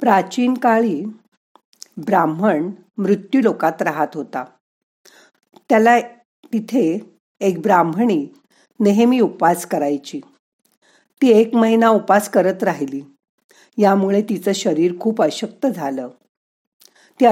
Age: 50-69